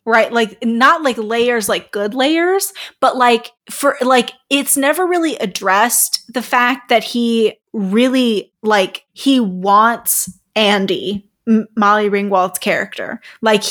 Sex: female